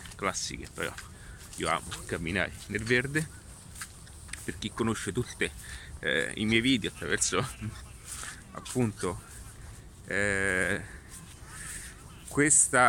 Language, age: Italian, 30-49